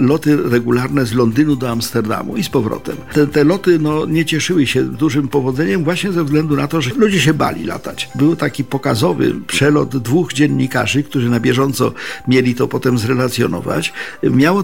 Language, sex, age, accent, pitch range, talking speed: Polish, male, 50-69, native, 125-160 Hz, 170 wpm